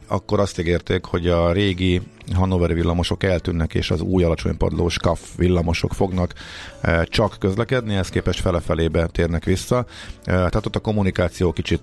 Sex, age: male, 50-69